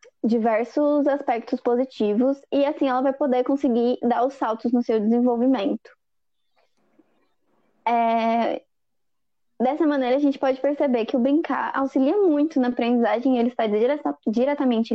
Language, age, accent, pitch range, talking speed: Portuguese, 20-39, Brazilian, 215-265 Hz, 135 wpm